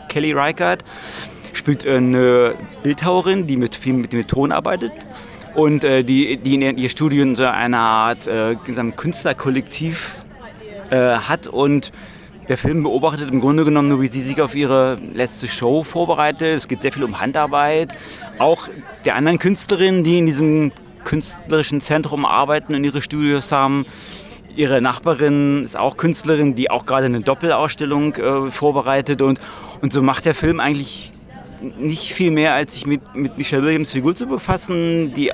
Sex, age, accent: male, 30-49, German